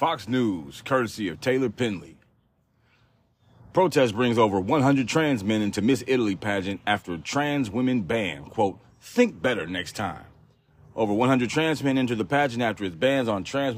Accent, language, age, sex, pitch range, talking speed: American, English, 30-49, male, 110-130 Hz, 165 wpm